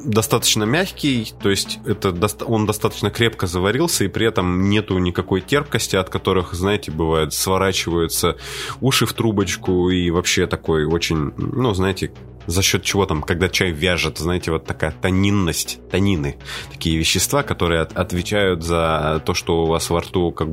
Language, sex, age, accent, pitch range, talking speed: Russian, male, 20-39, native, 85-100 Hz, 155 wpm